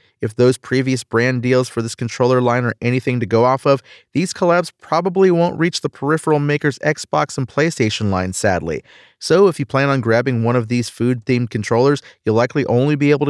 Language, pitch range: English, 110-140 Hz